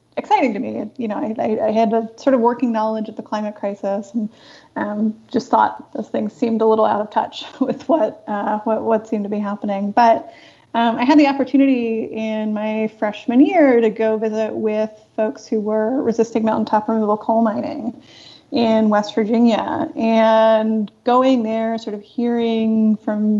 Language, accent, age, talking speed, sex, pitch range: English, American, 30-49, 180 wpm, female, 215-245 Hz